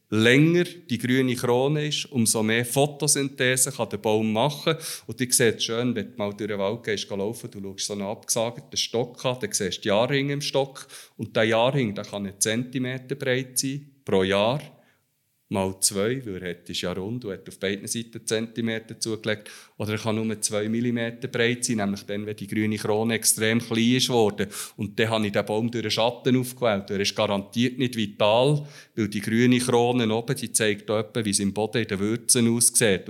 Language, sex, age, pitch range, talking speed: German, male, 50-69, 110-130 Hz, 205 wpm